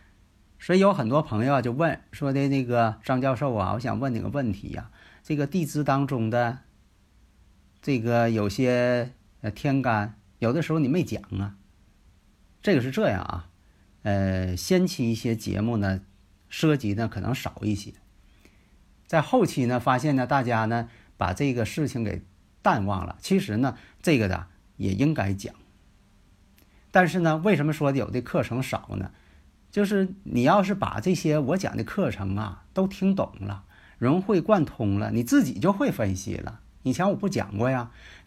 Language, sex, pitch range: Chinese, male, 100-145 Hz